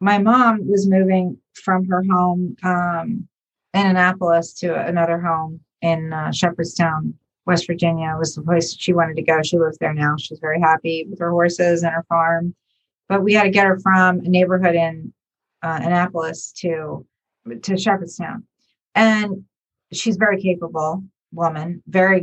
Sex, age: female, 40-59